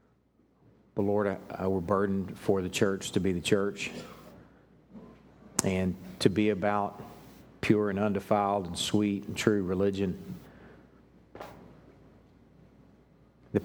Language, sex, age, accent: English, male, 50-69, American